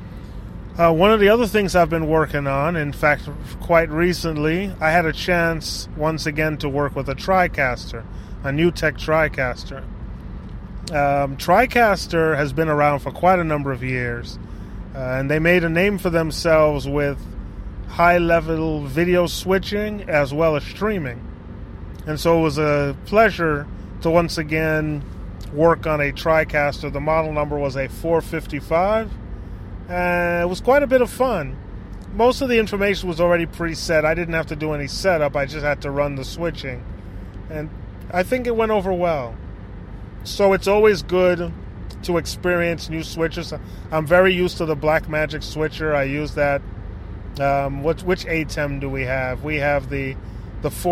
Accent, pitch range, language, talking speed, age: American, 130-170 Hz, English, 165 wpm, 30-49